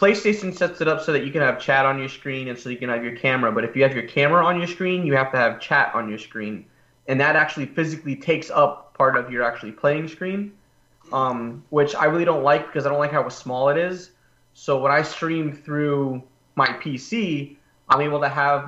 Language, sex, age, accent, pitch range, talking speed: English, male, 20-39, American, 125-150 Hz, 240 wpm